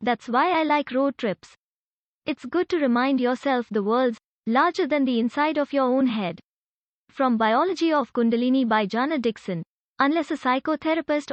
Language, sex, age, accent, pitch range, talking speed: English, female, 20-39, Indian, 230-285 Hz, 165 wpm